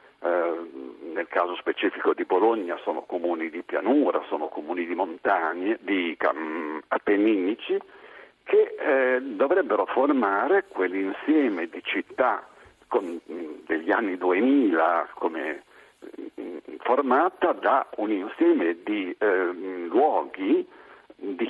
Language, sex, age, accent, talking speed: Italian, male, 60-79, native, 90 wpm